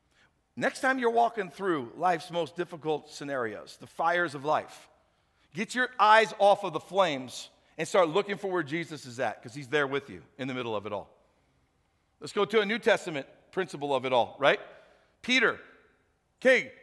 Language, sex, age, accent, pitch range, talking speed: English, male, 50-69, American, 165-255 Hz, 185 wpm